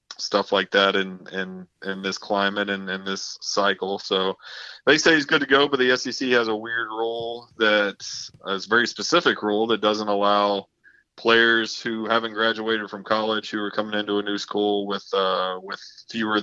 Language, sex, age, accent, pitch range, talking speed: English, male, 20-39, American, 100-110 Hz, 195 wpm